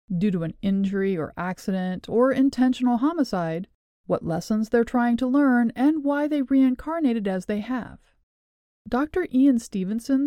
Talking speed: 145 wpm